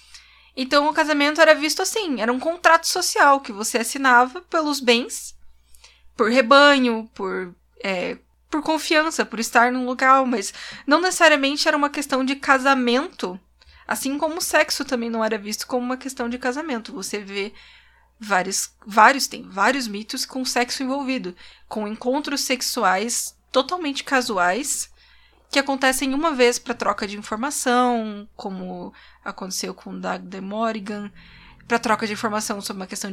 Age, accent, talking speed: 20-39, Brazilian, 150 wpm